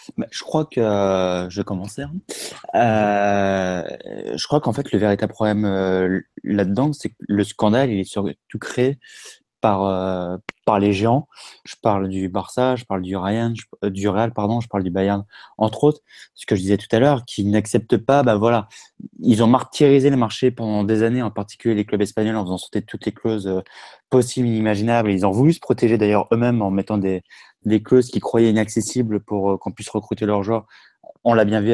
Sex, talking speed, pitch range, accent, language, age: male, 210 wpm, 105-125 Hz, French, French, 20-39